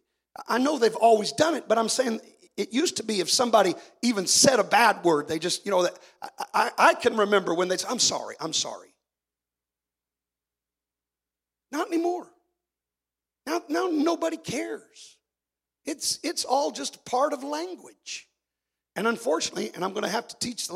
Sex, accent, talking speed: male, American, 170 wpm